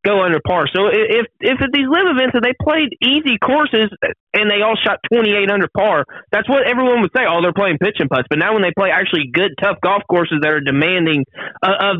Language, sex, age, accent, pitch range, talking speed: English, male, 20-39, American, 155-215 Hz, 235 wpm